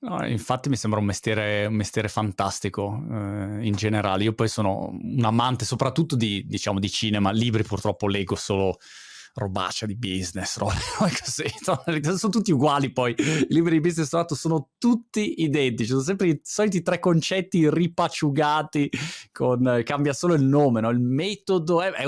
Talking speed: 160 wpm